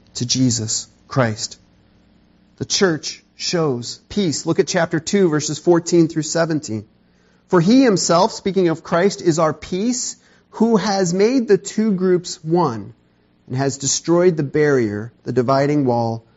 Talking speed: 145 wpm